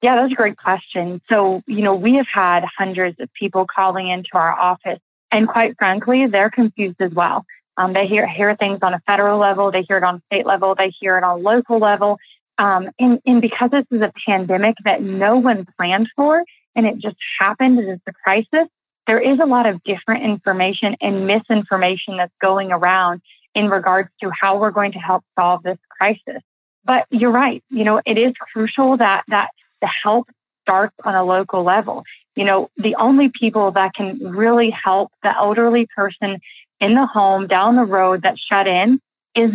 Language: English